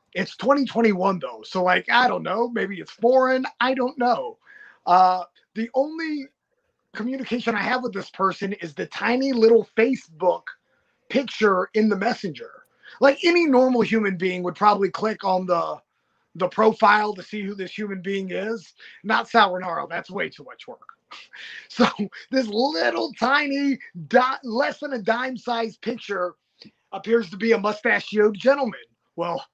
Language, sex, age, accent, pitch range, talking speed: English, male, 30-49, American, 185-245 Hz, 155 wpm